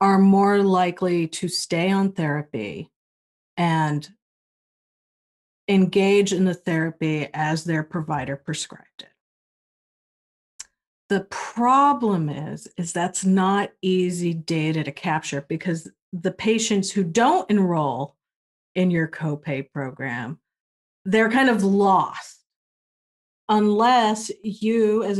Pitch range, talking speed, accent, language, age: 160-195 Hz, 105 wpm, American, English, 40-59